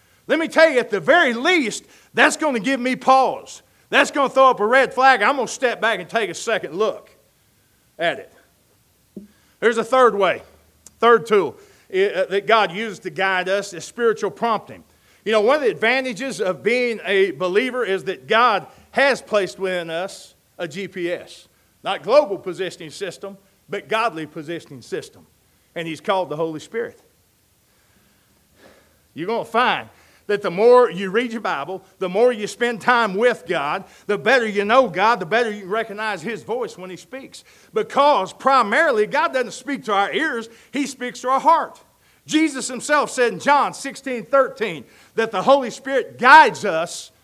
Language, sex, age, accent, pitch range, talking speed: English, male, 40-59, American, 190-265 Hz, 180 wpm